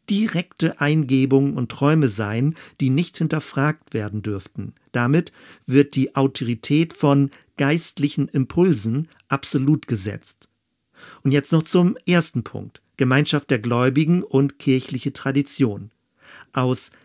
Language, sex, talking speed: German, male, 115 wpm